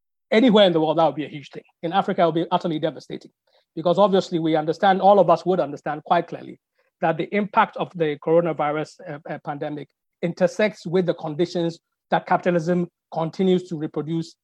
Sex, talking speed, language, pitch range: male, 190 wpm, English, 155-180 Hz